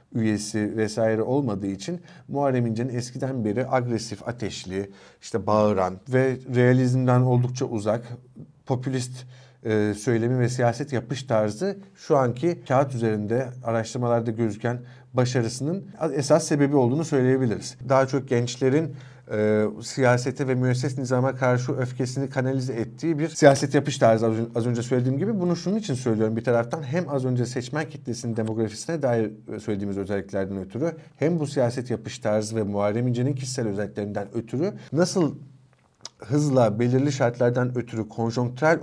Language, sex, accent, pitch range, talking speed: Turkish, male, native, 115-140 Hz, 135 wpm